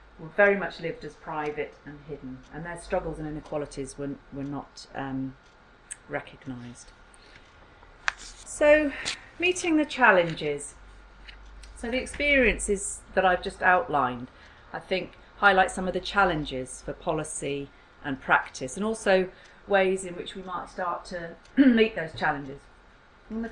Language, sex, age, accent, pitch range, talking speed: English, female, 40-59, British, 145-200 Hz, 140 wpm